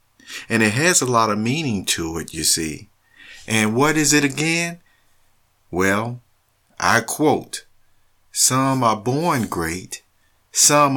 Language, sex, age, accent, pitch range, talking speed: English, male, 50-69, American, 95-125 Hz, 130 wpm